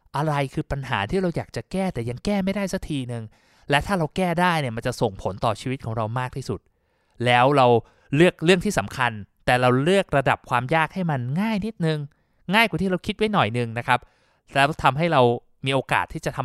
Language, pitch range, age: Thai, 120-160 Hz, 20-39